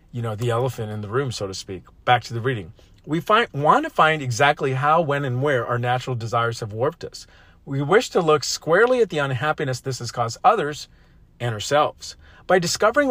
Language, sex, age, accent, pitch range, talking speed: English, male, 40-59, American, 120-160 Hz, 210 wpm